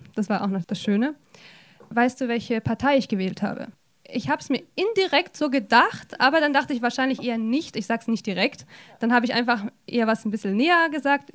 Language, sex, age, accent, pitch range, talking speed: German, female, 20-39, German, 215-260 Hz, 220 wpm